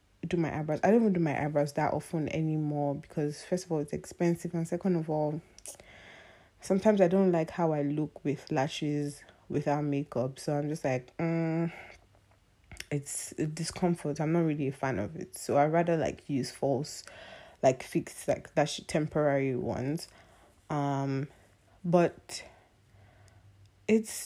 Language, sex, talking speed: English, female, 150 wpm